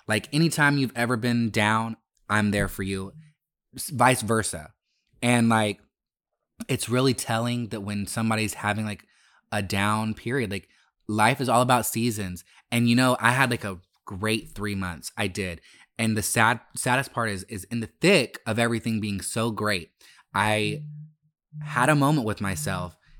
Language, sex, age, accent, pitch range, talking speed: English, male, 20-39, American, 100-125 Hz, 170 wpm